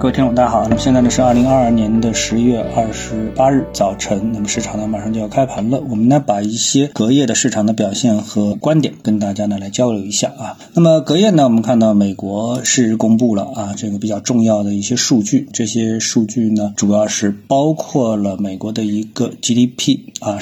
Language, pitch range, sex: Chinese, 110-165 Hz, male